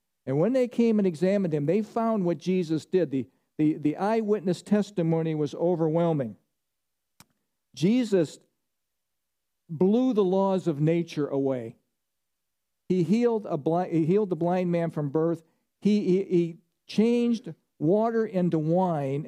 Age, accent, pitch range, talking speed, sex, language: 50-69, American, 165-215 Hz, 135 wpm, male, English